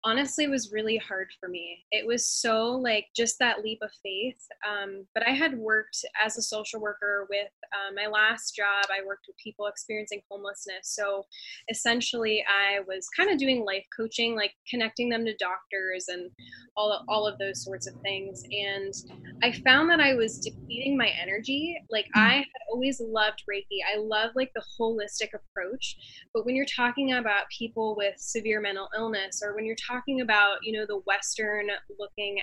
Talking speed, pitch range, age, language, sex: 185 wpm, 200-230 Hz, 10-29, English, female